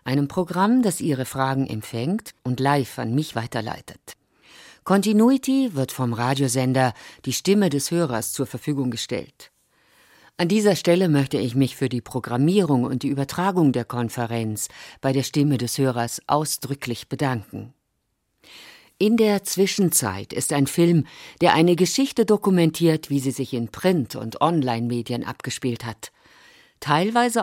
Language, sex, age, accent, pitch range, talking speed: German, female, 50-69, German, 125-175 Hz, 140 wpm